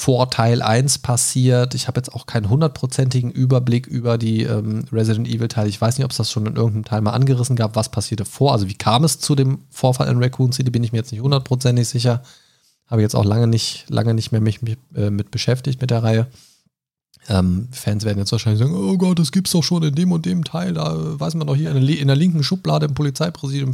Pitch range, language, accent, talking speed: 115-140 Hz, German, German, 240 wpm